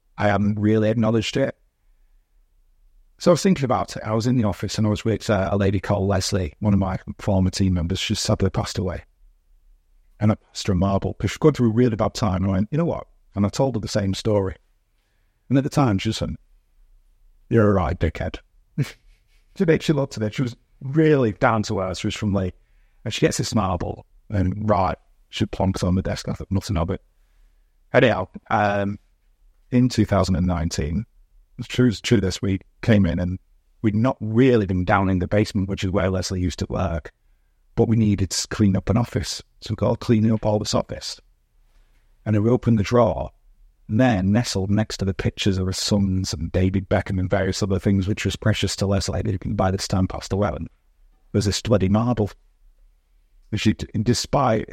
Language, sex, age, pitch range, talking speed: English, male, 50-69, 95-110 Hz, 200 wpm